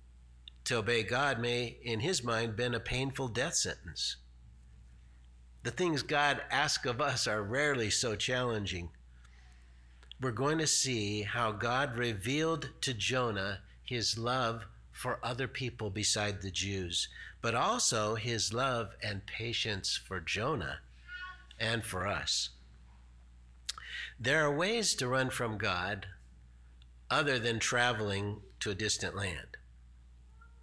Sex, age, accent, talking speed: male, 50-69, American, 125 wpm